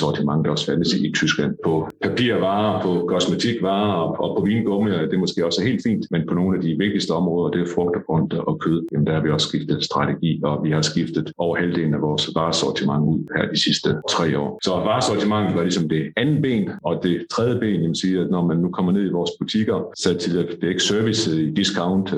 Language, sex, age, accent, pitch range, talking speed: Danish, male, 50-69, native, 80-90 Hz, 230 wpm